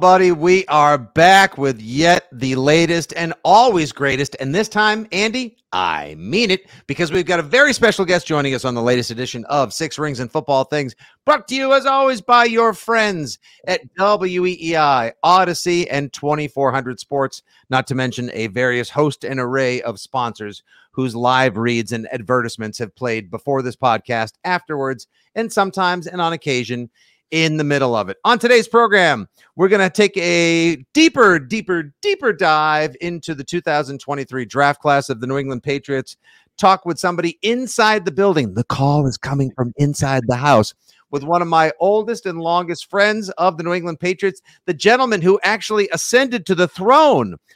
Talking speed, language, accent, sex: 175 wpm, English, American, male